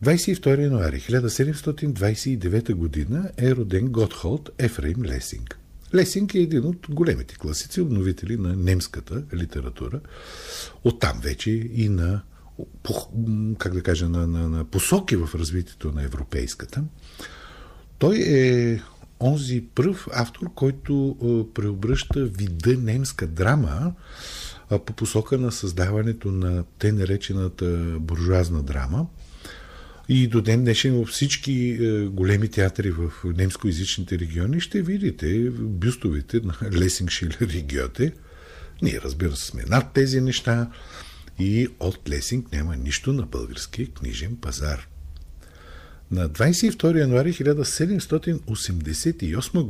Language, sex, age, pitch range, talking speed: Bulgarian, male, 50-69, 80-125 Hz, 105 wpm